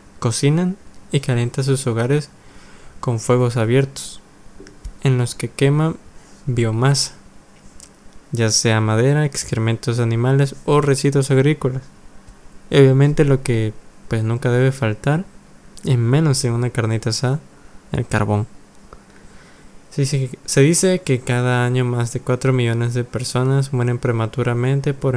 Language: Spanish